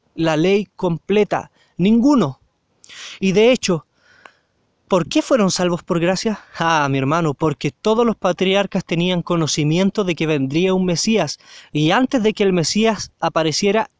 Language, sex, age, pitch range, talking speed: Spanish, male, 20-39, 170-230 Hz, 145 wpm